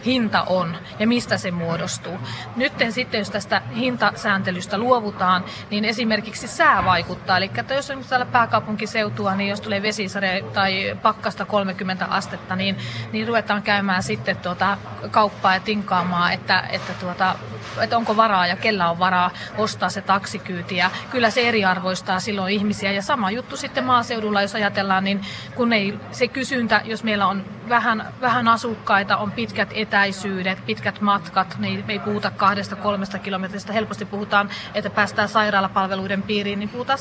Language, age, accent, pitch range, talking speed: Finnish, 30-49, native, 190-220 Hz, 155 wpm